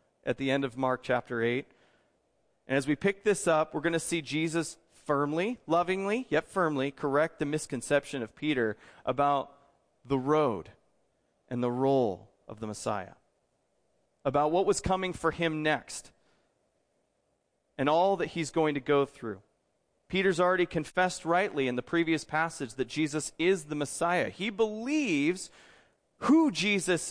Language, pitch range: English, 135-175 Hz